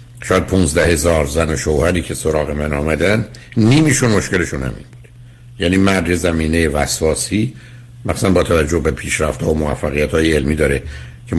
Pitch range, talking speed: 85-120 Hz, 160 wpm